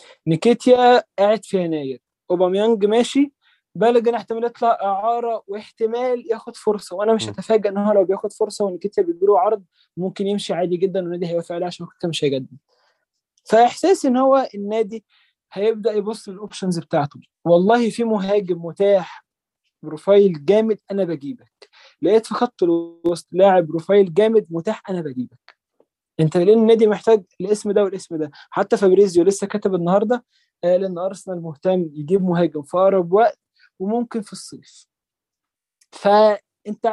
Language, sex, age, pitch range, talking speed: Arabic, male, 20-39, 175-225 Hz, 135 wpm